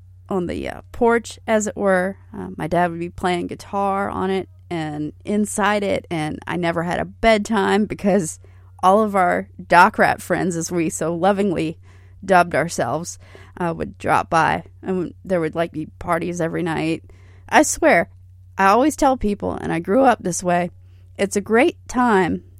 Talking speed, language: 175 wpm, English